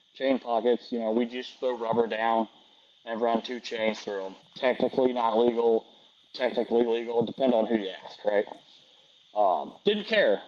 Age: 20-39